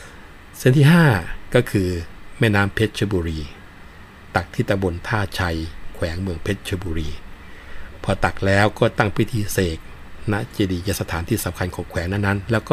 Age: 60-79